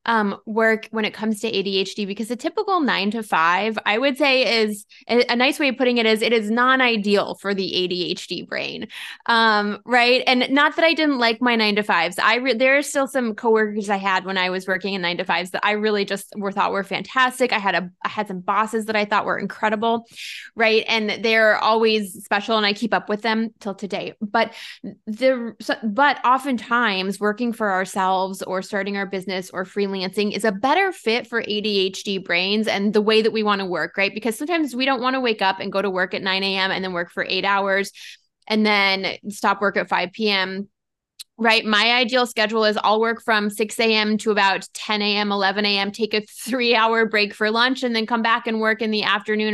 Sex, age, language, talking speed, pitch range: female, 20-39, English, 220 wpm, 195-230 Hz